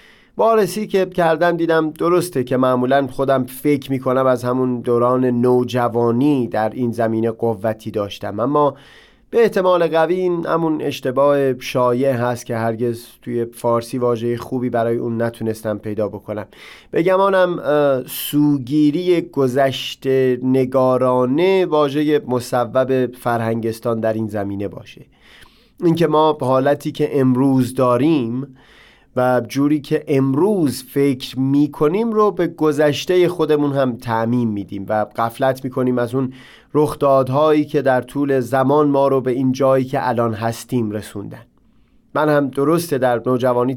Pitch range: 120-150 Hz